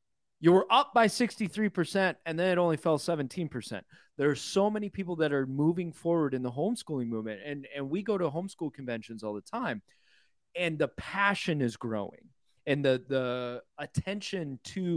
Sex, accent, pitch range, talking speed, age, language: male, American, 120-170 Hz, 175 wpm, 30-49, English